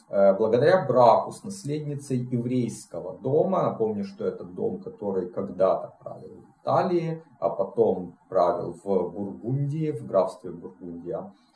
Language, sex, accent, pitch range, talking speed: Russian, male, native, 100-140 Hz, 120 wpm